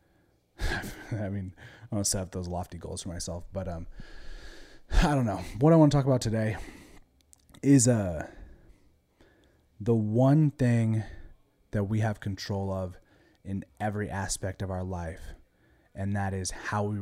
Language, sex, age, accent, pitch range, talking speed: English, male, 20-39, American, 95-120 Hz, 155 wpm